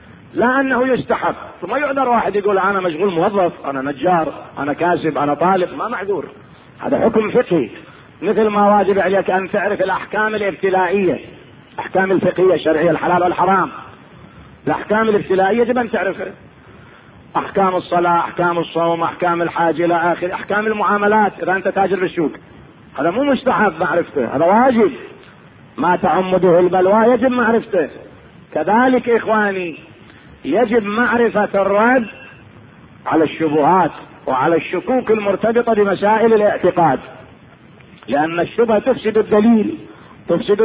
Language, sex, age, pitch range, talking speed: Arabic, male, 40-59, 170-220 Hz, 120 wpm